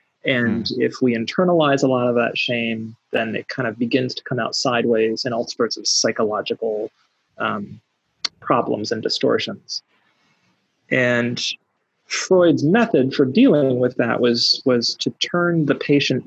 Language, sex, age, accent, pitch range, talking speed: Spanish, male, 30-49, American, 120-145 Hz, 150 wpm